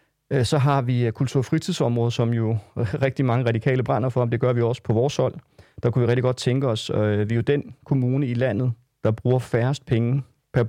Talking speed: 225 wpm